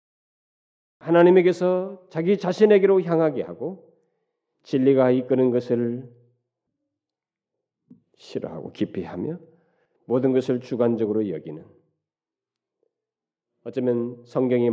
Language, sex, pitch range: Korean, male, 110-150 Hz